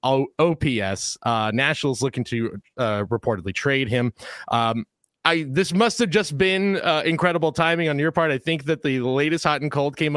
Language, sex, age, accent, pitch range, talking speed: English, male, 30-49, American, 115-155 Hz, 190 wpm